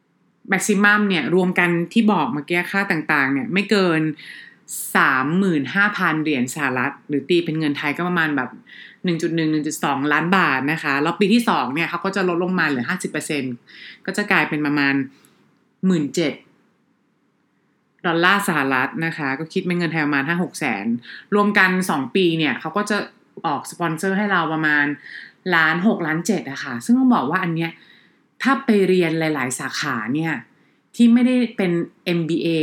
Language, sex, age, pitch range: English, female, 30-49, 155-195 Hz